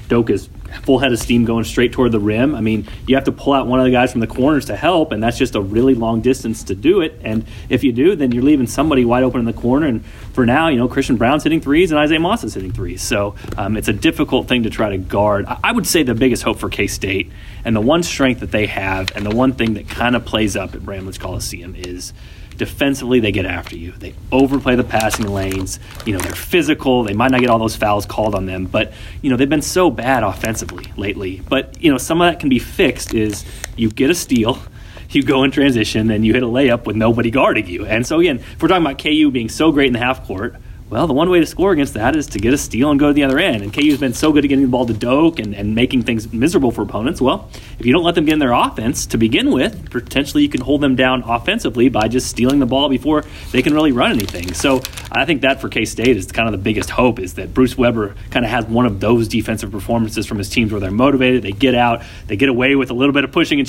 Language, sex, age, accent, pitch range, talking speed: English, male, 30-49, American, 105-130 Hz, 275 wpm